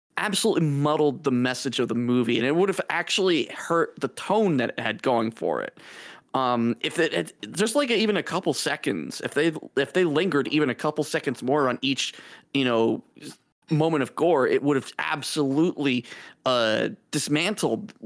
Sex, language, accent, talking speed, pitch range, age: male, English, American, 175 wpm, 125-170 Hz, 30-49